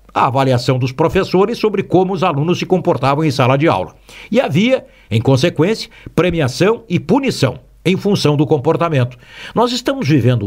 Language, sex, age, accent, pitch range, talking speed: Portuguese, male, 60-79, Brazilian, 145-215 Hz, 160 wpm